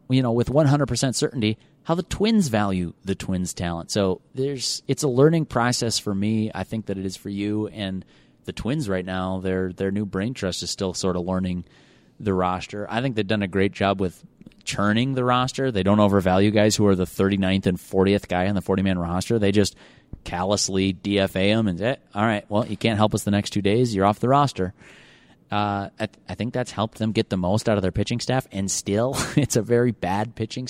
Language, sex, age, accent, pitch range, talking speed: English, male, 30-49, American, 95-125 Hz, 225 wpm